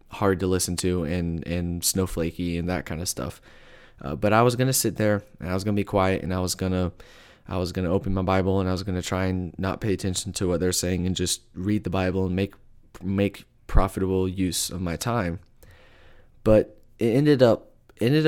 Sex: male